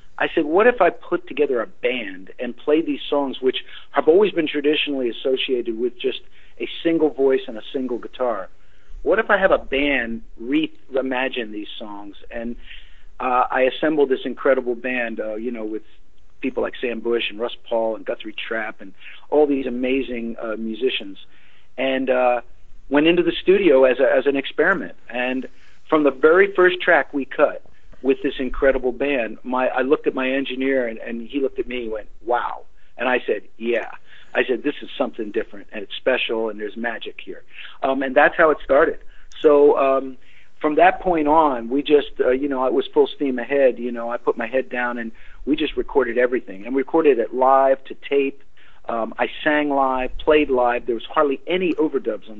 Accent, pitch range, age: American, 120-155 Hz, 50-69